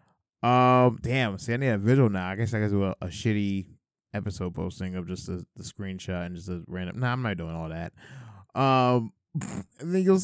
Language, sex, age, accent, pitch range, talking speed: English, male, 20-39, American, 95-130 Hz, 215 wpm